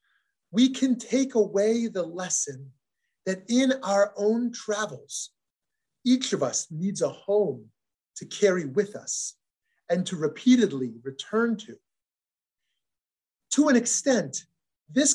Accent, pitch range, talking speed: American, 155-225 Hz, 120 wpm